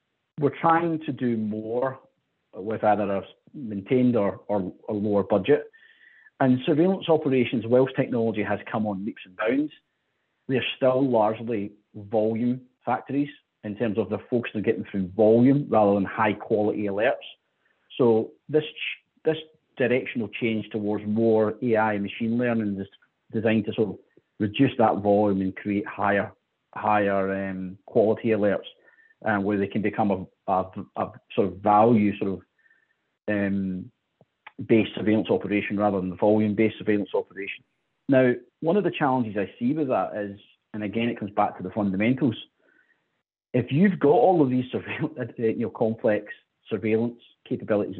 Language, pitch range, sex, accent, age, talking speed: English, 105-130 Hz, male, British, 40-59, 155 wpm